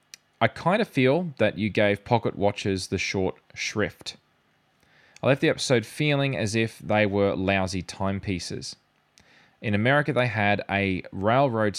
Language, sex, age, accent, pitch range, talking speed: English, male, 20-39, Australian, 95-125 Hz, 150 wpm